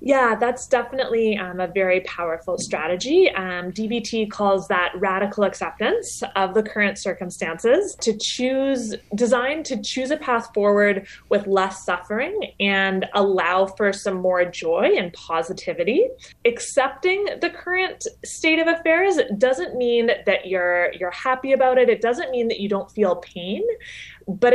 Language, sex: English, female